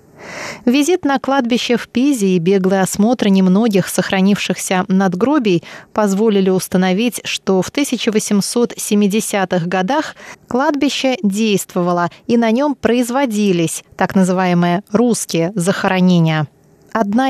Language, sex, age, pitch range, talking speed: Russian, female, 20-39, 190-240 Hz, 95 wpm